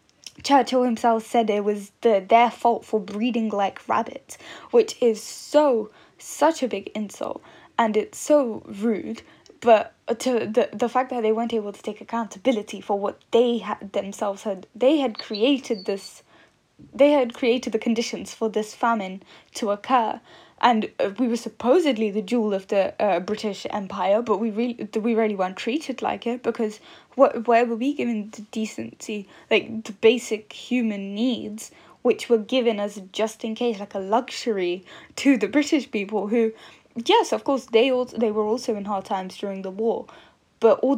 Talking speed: 165 wpm